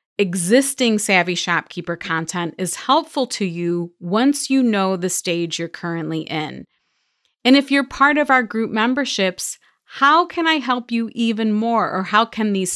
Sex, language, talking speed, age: female, English, 165 wpm, 30-49